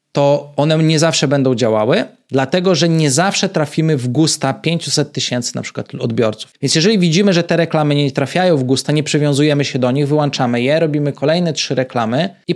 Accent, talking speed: native, 190 wpm